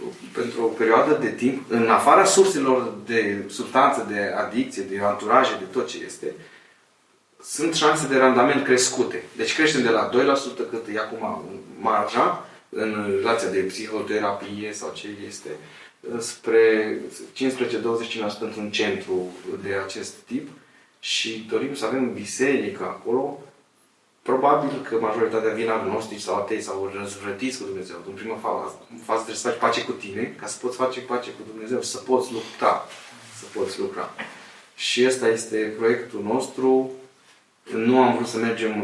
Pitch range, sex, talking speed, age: 105-125 Hz, male, 150 wpm, 20-39